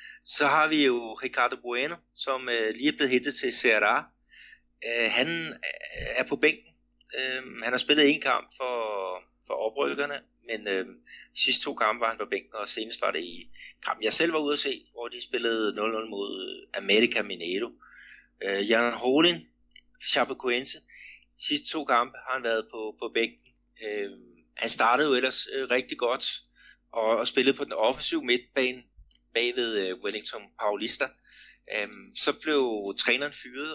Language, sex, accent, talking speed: Danish, male, native, 145 wpm